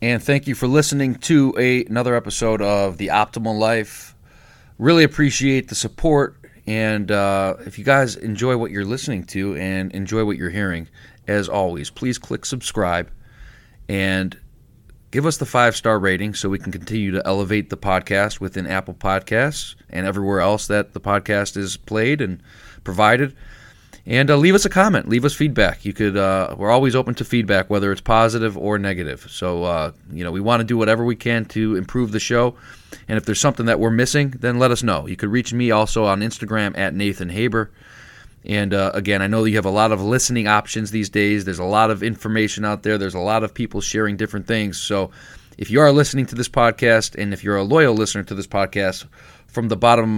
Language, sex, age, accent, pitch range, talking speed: English, male, 30-49, American, 100-120 Hz, 205 wpm